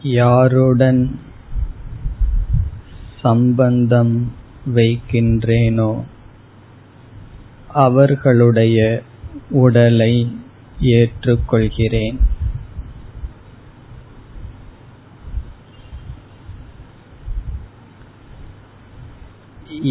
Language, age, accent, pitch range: Tamil, 20-39, native, 110-120 Hz